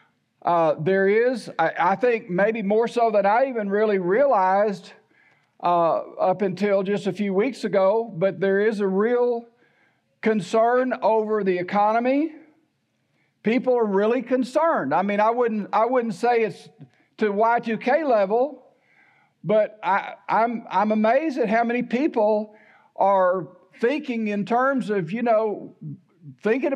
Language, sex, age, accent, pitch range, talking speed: English, male, 60-79, American, 195-240 Hz, 145 wpm